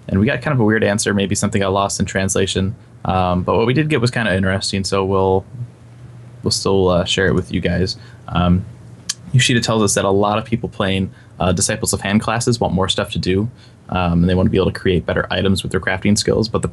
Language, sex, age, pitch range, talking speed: English, male, 20-39, 90-110 Hz, 255 wpm